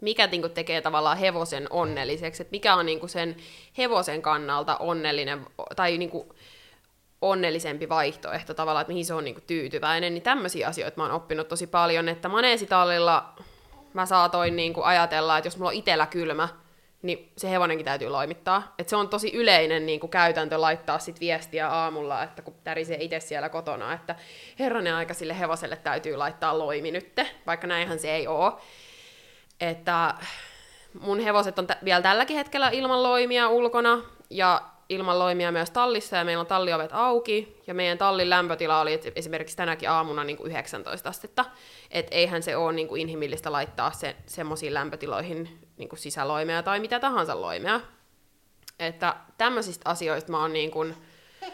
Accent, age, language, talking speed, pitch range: native, 20-39, Finnish, 140 wpm, 160-195 Hz